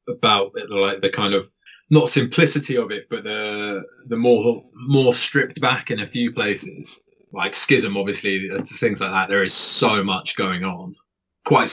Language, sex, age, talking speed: English, male, 20-39, 170 wpm